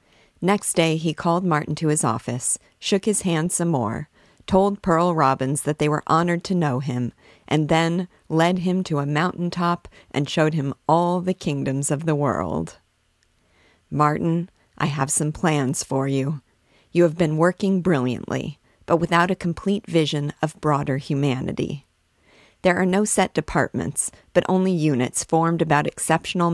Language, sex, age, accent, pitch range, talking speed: English, female, 50-69, American, 145-175 Hz, 160 wpm